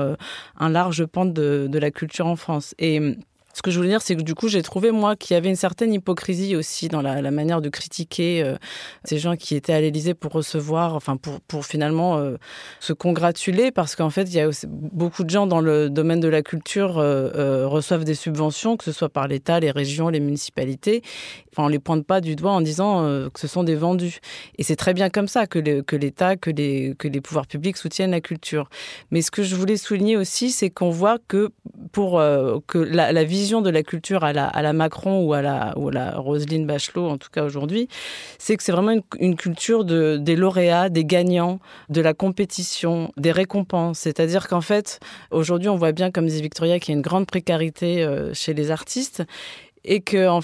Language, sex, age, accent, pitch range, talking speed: French, female, 30-49, French, 155-190 Hz, 230 wpm